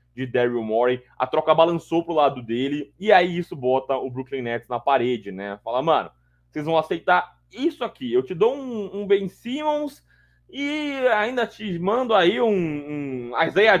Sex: male